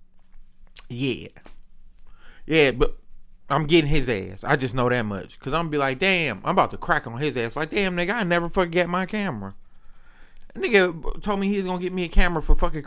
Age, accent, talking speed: 30-49, American, 215 wpm